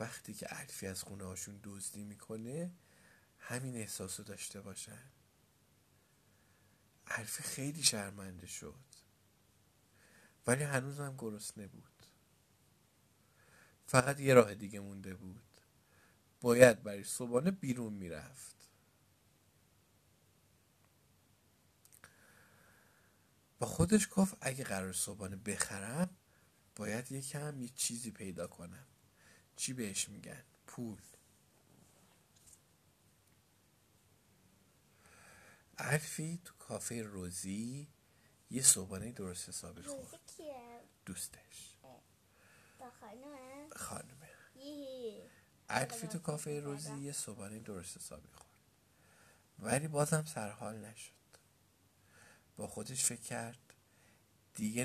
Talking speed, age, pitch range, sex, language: 85 wpm, 50-69, 100-140 Hz, male, Persian